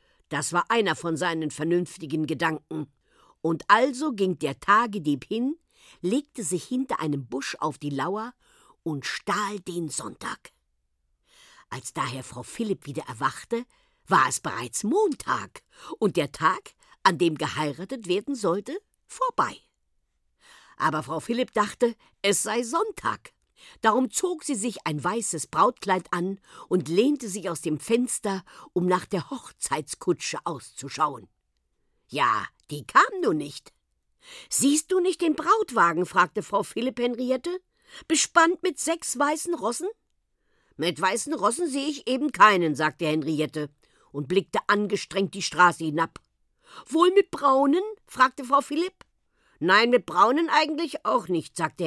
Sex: female